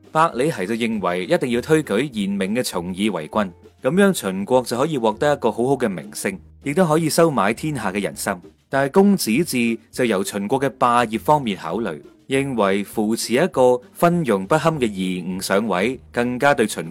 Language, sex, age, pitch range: Chinese, male, 30-49, 105-155 Hz